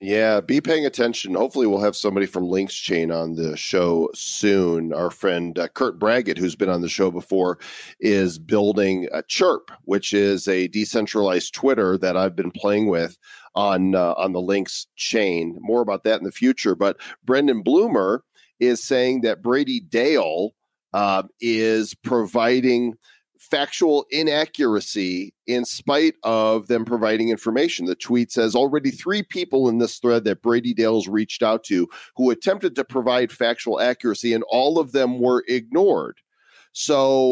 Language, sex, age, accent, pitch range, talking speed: English, male, 40-59, American, 100-125 Hz, 160 wpm